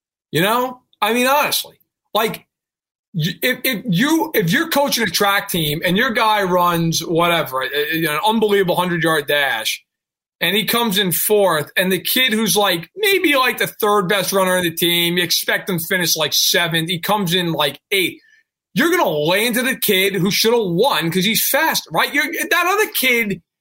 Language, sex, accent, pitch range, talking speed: English, male, American, 185-270 Hz, 190 wpm